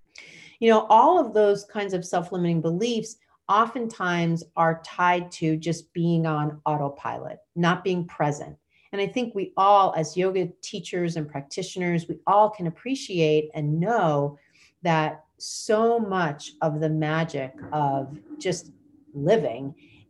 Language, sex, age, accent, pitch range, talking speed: English, female, 40-59, American, 155-190 Hz, 135 wpm